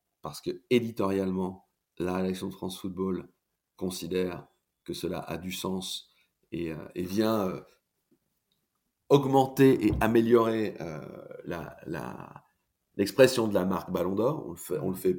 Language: French